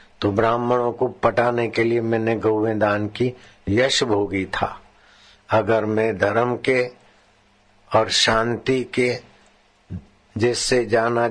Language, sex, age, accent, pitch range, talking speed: Hindi, male, 60-79, native, 105-120 Hz, 110 wpm